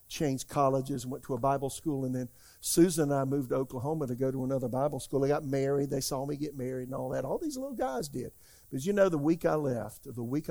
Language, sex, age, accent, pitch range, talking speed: English, male, 50-69, American, 120-155 Hz, 270 wpm